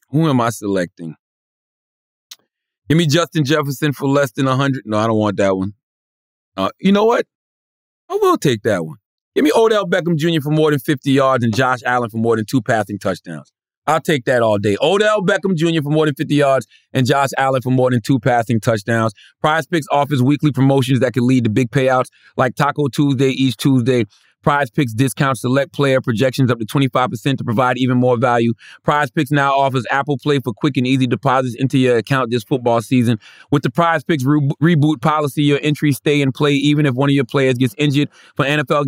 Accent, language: American, English